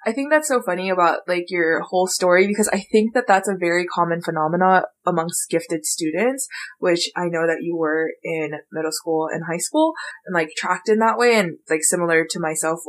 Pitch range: 165-215 Hz